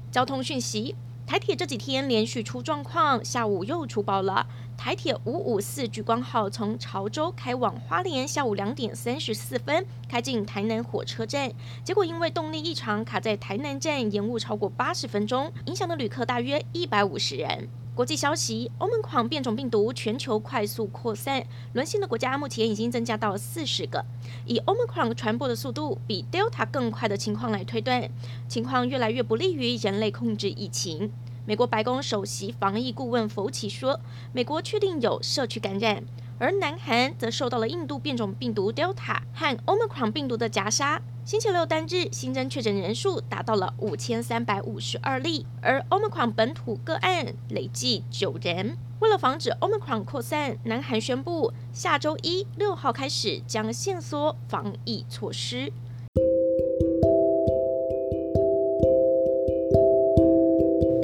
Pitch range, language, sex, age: 115-150 Hz, Chinese, female, 20-39